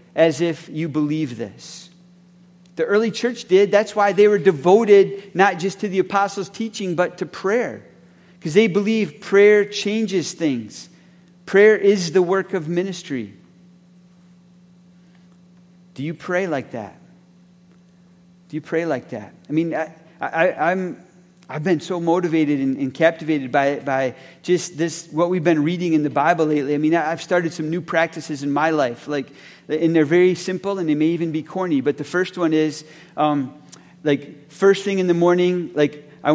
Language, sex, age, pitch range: English, male, 40-59, 145-180 Hz